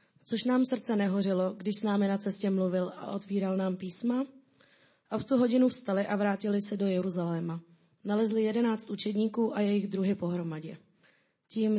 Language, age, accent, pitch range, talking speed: Czech, 20-39, native, 185-220 Hz, 165 wpm